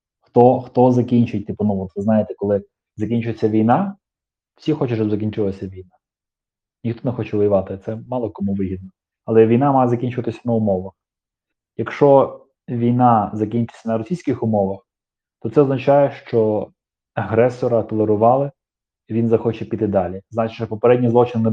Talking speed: 140 wpm